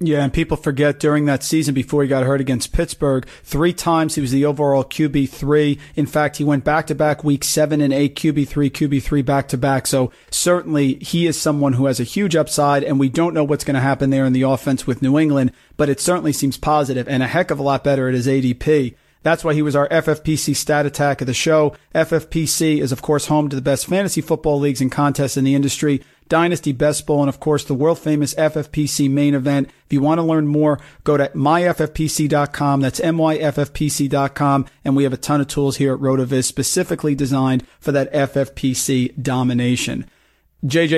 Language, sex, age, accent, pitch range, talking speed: English, male, 40-59, American, 140-155 Hz, 200 wpm